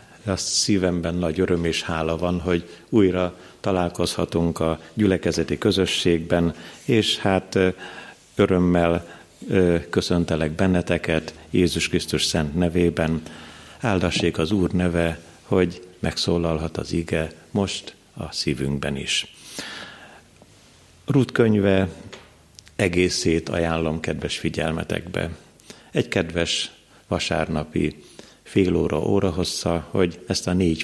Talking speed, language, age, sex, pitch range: 95 wpm, Hungarian, 50-69, male, 80-95 Hz